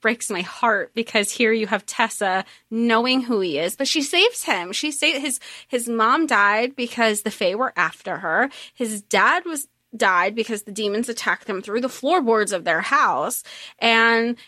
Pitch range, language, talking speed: 205-260 Hz, English, 180 wpm